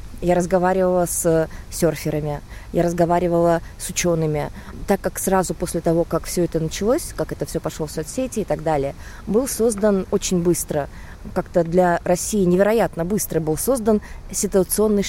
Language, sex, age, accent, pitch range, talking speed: Russian, female, 20-39, native, 160-205 Hz, 150 wpm